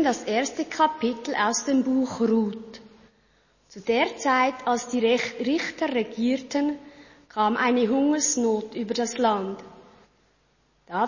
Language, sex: German, female